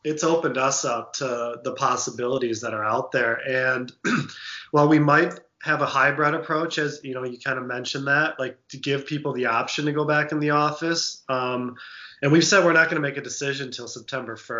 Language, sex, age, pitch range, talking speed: English, male, 20-39, 125-145 Hz, 215 wpm